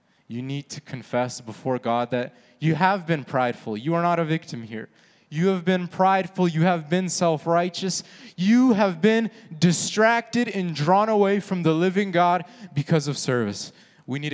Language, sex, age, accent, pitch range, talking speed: English, male, 20-39, American, 115-165 Hz, 170 wpm